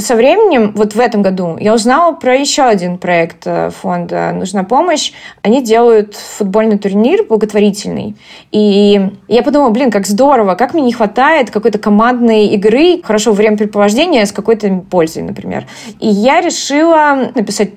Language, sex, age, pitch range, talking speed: Russian, female, 20-39, 200-240 Hz, 150 wpm